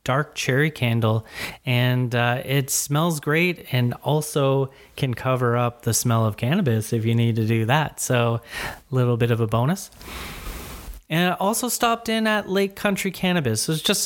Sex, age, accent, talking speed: male, 30-49, American, 175 wpm